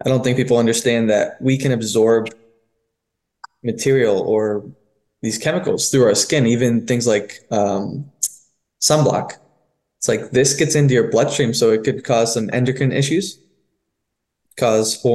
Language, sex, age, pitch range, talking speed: English, male, 20-39, 110-130 Hz, 145 wpm